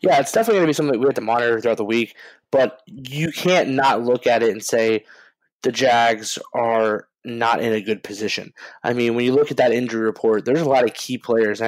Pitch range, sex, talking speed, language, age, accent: 110-125 Hz, male, 245 wpm, English, 20-39, American